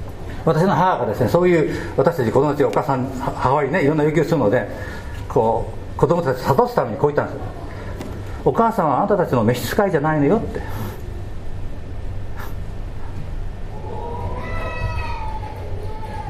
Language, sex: Japanese, male